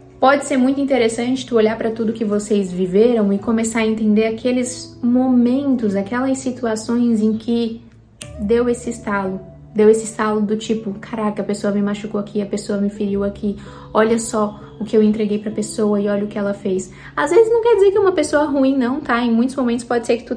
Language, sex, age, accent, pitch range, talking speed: Portuguese, female, 20-39, Brazilian, 210-255 Hz, 215 wpm